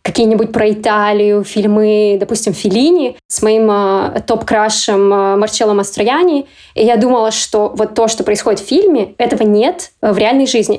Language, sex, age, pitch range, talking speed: Russian, female, 20-39, 210-245 Hz, 145 wpm